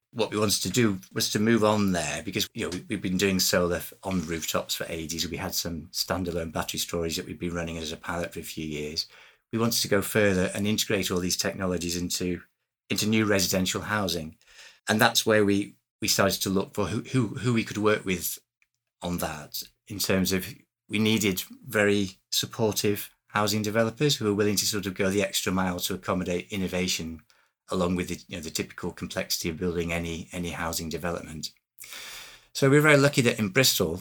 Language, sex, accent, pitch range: English, male, British, 90-110 Hz